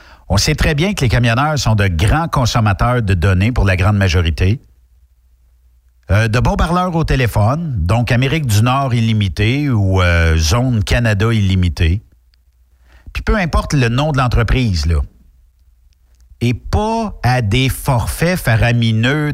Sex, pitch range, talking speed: male, 80-125 Hz, 145 wpm